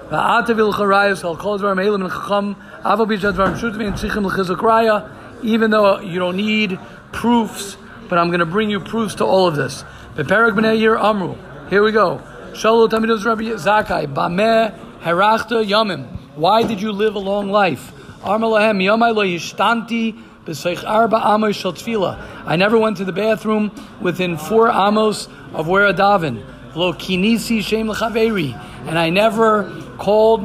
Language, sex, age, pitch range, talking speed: English, male, 50-69, 180-220 Hz, 85 wpm